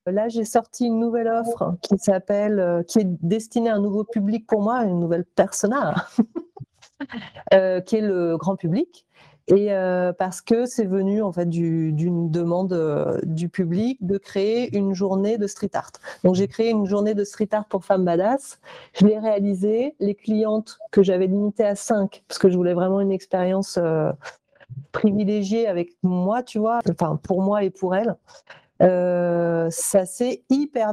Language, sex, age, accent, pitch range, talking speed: French, female, 40-59, French, 180-220 Hz, 180 wpm